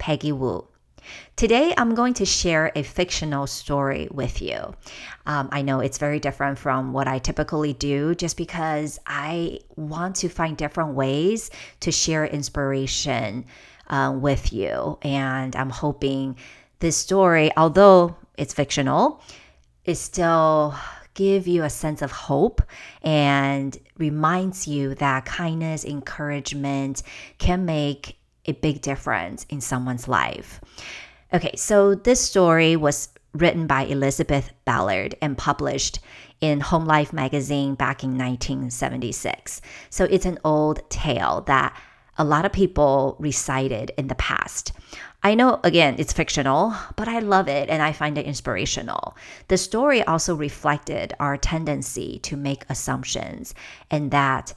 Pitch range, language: 140-165 Hz, English